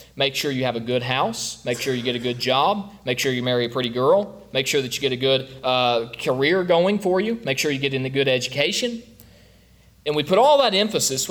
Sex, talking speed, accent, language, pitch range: male, 250 wpm, American, English, 125-190 Hz